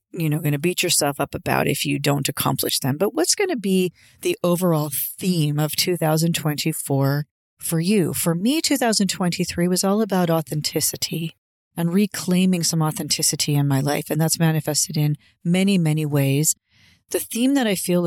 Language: English